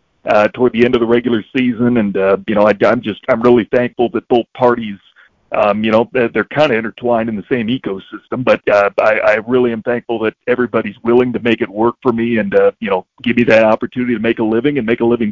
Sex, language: male, English